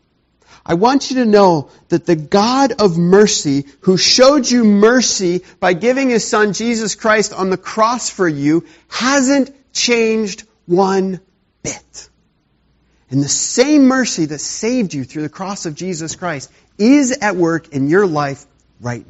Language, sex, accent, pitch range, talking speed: English, male, American, 135-225 Hz, 155 wpm